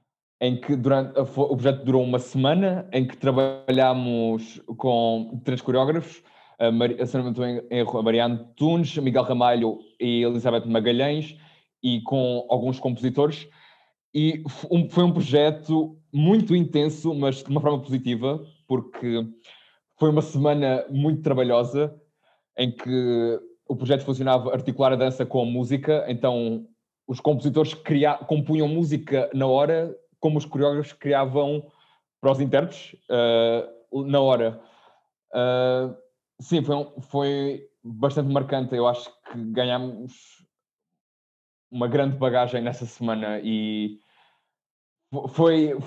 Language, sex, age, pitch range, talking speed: Portuguese, male, 20-39, 125-150 Hz, 115 wpm